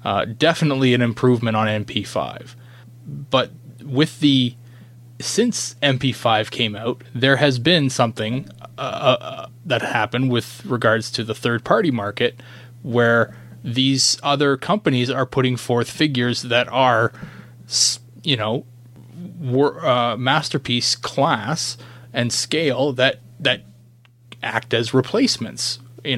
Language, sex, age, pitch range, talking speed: English, male, 30-49, 120-135 Hz, 115 wpm